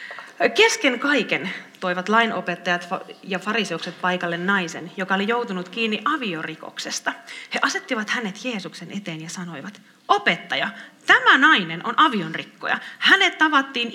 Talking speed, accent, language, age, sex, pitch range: 115 wpm, native, Finnish, 30-49, female, 180-245 Hz